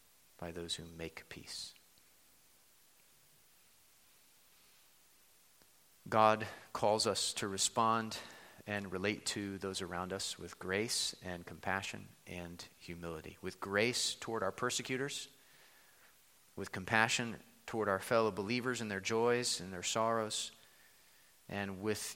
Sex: male